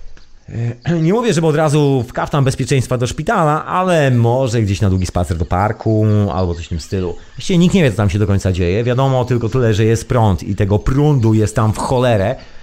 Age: 40-59